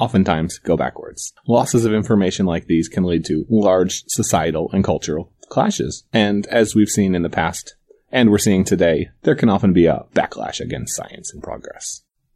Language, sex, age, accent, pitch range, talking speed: English, male, 30-49, American, 95-120 Hz, 180 wpm